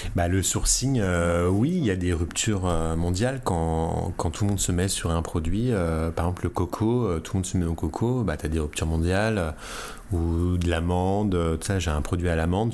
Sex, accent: male, French